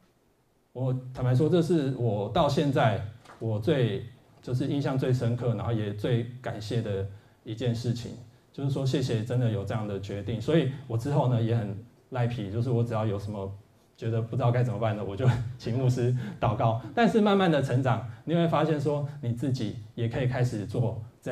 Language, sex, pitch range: Chinese, male, 115-140 Hz